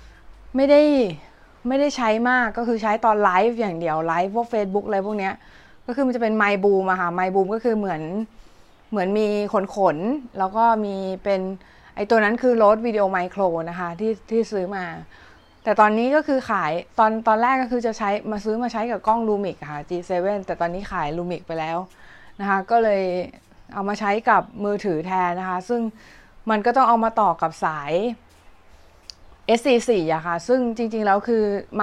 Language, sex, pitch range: Thai, female, 175-225 Hz